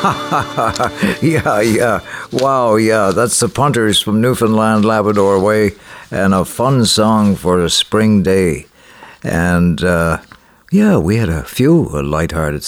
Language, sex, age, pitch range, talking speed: English, male, 60-79, 90-115 Hz, 130 wpm